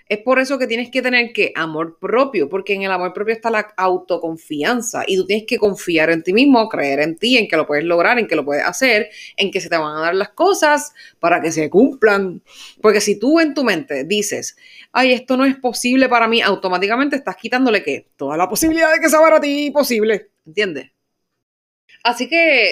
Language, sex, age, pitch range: Spanish, female, 30-49, 180-265 Hz